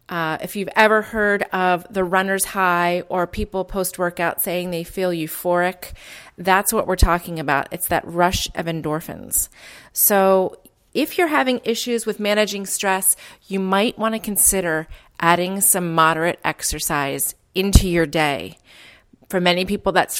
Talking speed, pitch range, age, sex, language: 150 wpm, 170-210 Hz, 30-49, female, English